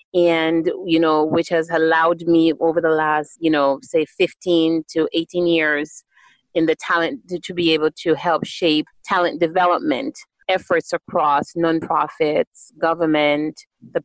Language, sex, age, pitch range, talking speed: English, female, 30-49, 155-180 Hz, 145 wpm